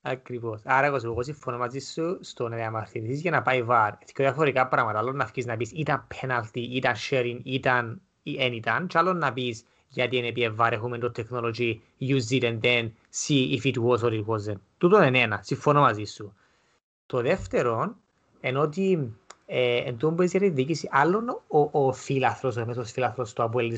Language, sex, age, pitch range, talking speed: Greek, male, 20-39, 120-160 Hz, 75 wpm